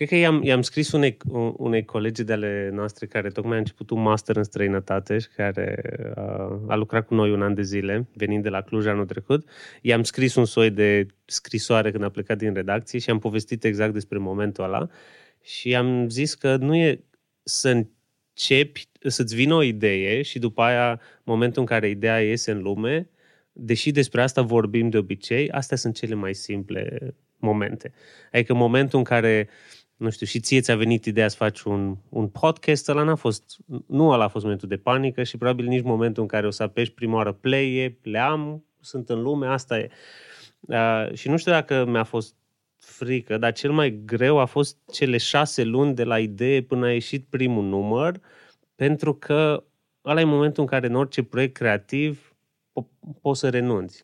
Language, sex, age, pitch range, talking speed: Romanian, male, 20-39, 110-135 Hz, 190 wpm